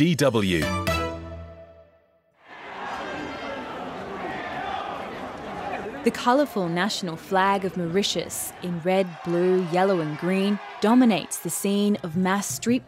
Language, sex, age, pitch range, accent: English, female, 20-39, 170-205 Hz, Australian